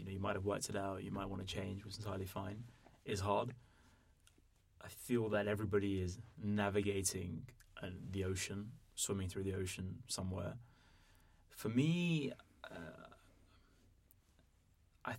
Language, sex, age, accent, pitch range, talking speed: English, male, 20-39, British, 95-105 Hz, 140 wpm